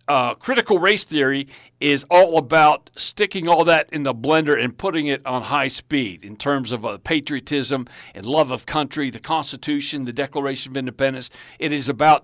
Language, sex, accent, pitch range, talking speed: English, male, American, 130-175 Hz, 180 wpm